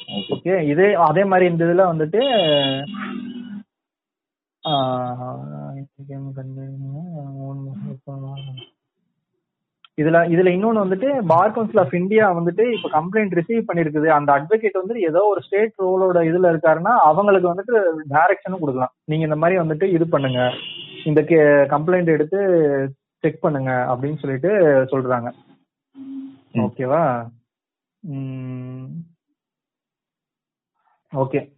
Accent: native